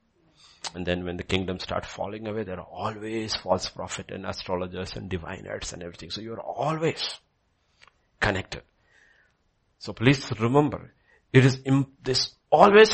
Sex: male